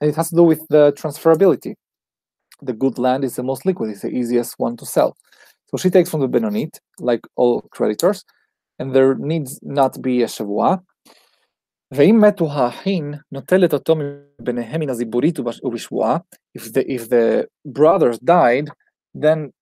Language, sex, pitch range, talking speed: English, male, 125-160 Hz, 135 wpm